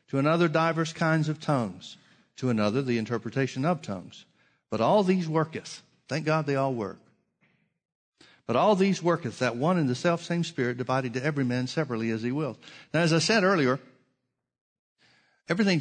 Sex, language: male, English